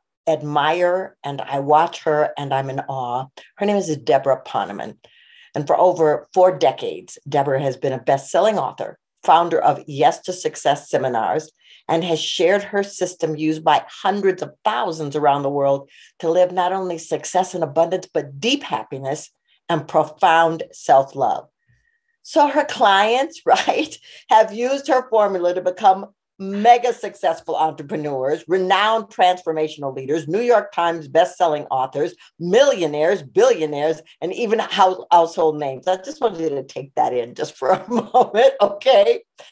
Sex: female